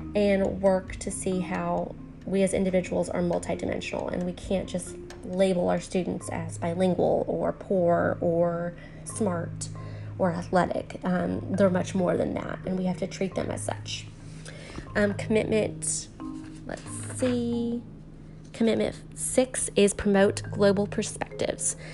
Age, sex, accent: 20-39, female, American